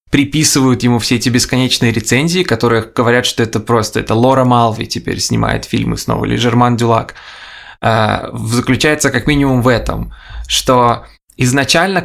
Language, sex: Russian, male